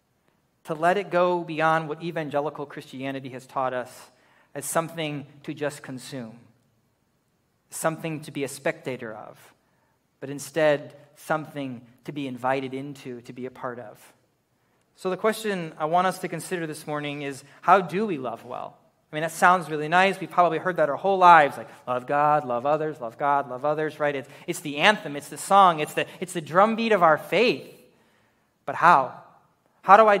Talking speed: 185 wpm